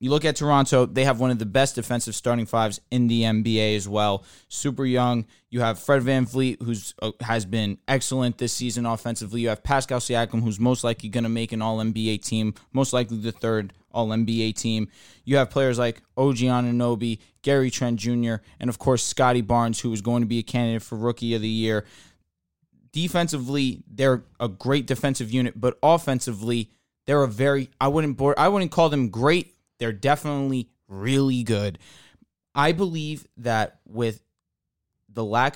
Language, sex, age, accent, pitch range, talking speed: English, male, 20-39, American, 110-135 Hz, 180 wpm